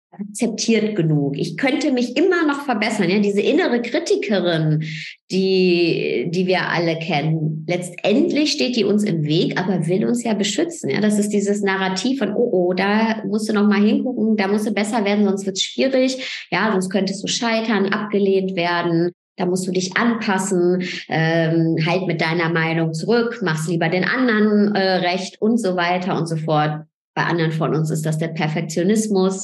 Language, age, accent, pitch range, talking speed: German, 20-39, German, 175-220 Hz, 180 wpm